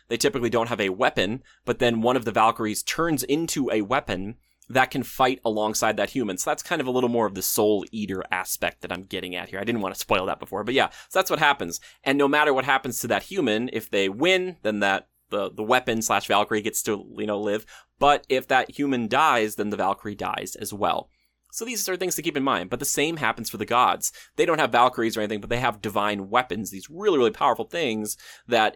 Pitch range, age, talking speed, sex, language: 110-165 Hz, 20-39, 245 wpm, male, English